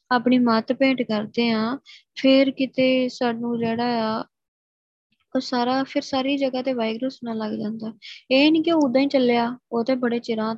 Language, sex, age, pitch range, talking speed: Punjabi, female, 20-39, 230-265 Hz, 170 wpm